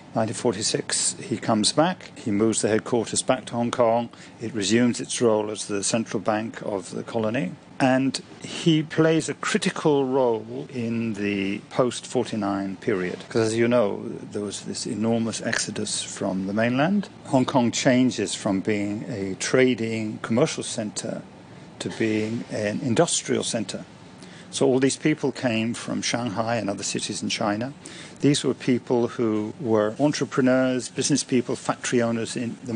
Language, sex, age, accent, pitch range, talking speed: English, male, 50-69, British, 110-135 Hz, 150 wpm